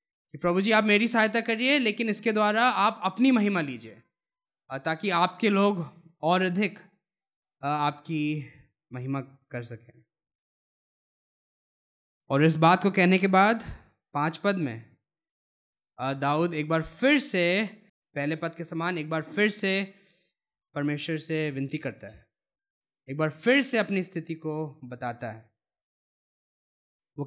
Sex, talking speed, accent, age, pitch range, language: male, 130 wpm, native, 20-39, 150-210 Hz, Hindi